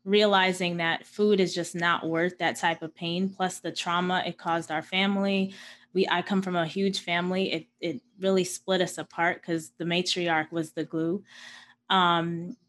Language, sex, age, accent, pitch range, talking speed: English, female, 20-39, American, 170-205 Hz, 180 wpm